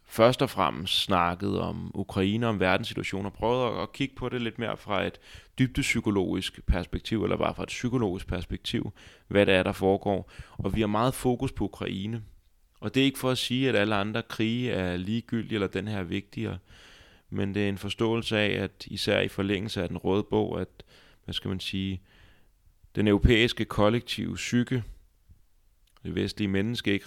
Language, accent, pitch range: Danish, native, 90-110 Hz